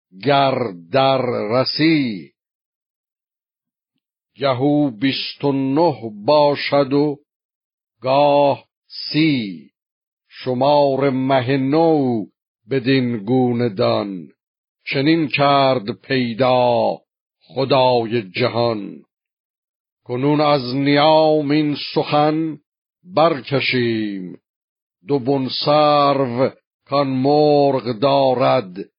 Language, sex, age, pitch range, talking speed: Persian, male, 50-69, 125-145 Hz, 60 wpm